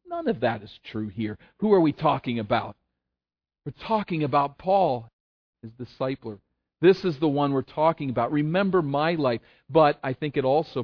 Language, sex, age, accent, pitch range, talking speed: English, male, 40-59, American, 115-170 Hz, 175 wpm